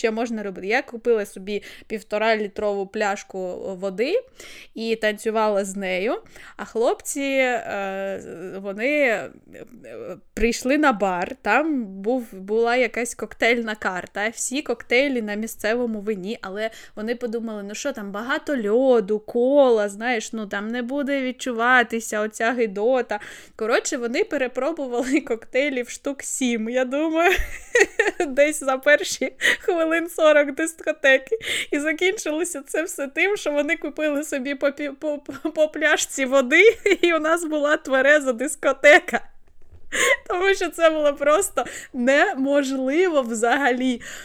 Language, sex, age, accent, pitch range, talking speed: Ukrainian, female, 20-39, native, 215-290 Hz, 115 wpm